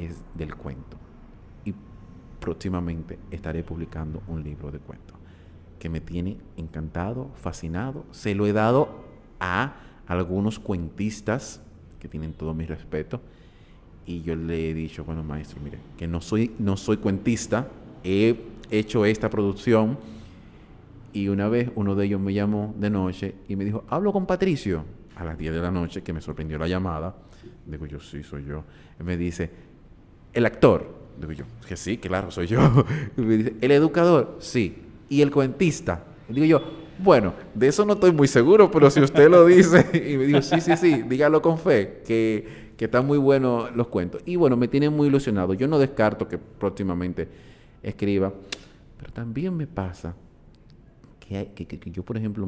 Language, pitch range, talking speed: Spanish, 85-120 Hz, 170 wpm